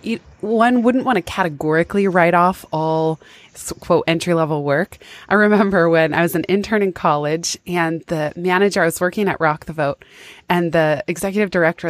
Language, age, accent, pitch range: English, 20-39, American, 165-210 Hz